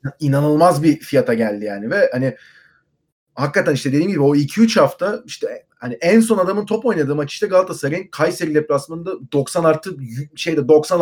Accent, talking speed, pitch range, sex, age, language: native, 165 wpm, 140-175 Hz, male, 30-49, Turkish